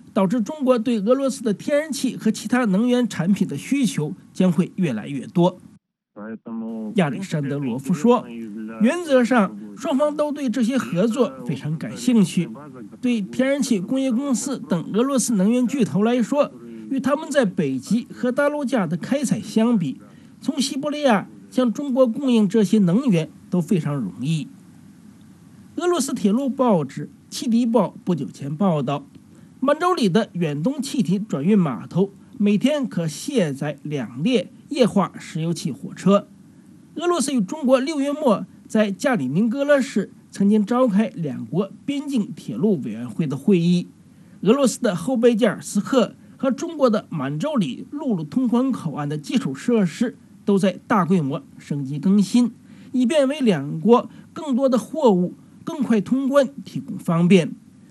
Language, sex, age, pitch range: English, male, 50-69, 190-255 Hz